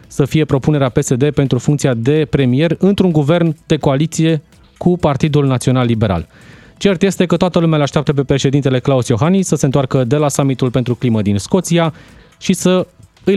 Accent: native